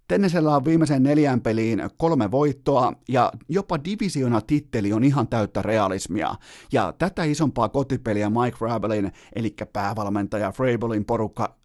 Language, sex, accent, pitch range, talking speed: Finnish, male, native, 105-135 Hz, 130 wpm